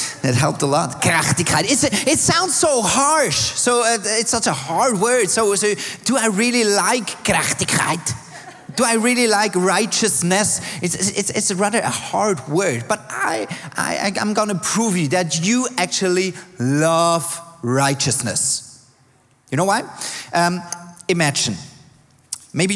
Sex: male